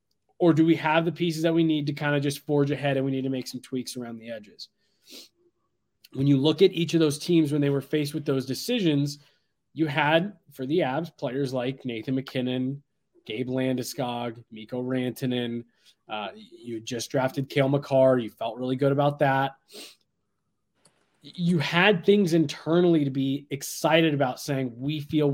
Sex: male